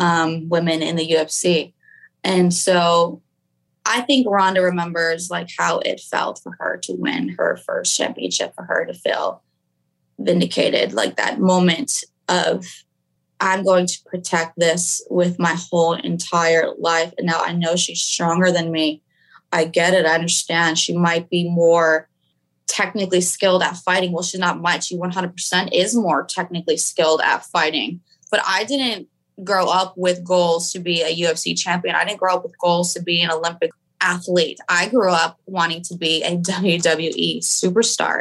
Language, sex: English, female